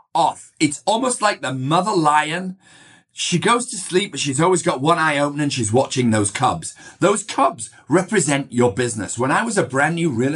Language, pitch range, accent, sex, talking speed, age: English, 145-195 Hz, British, male, 205 wpm, 40-59